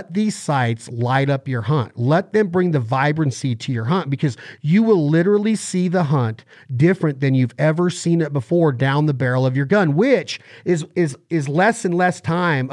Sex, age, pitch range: male, 40-59, 140-180 Hz